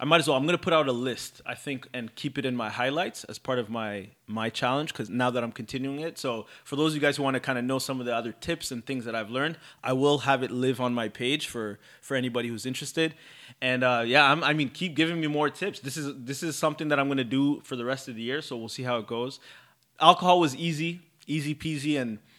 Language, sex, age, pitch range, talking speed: English, male, 20-39, 120-145 Hz, 280 wpm